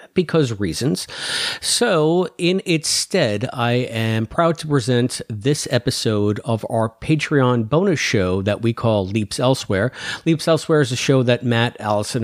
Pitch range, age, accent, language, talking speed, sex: 115-155 Hz, 50-69, American, English, 150 wpm, male